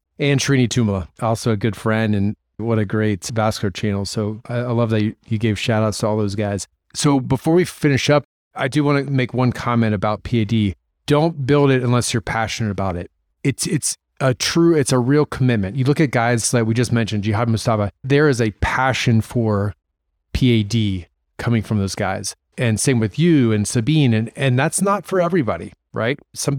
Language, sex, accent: English, male, American